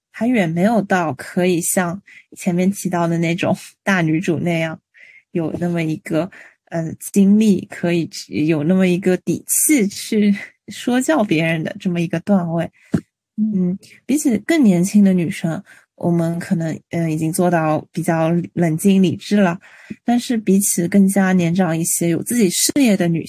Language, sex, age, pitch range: Chinese, female, 20-39, 170-205 Hz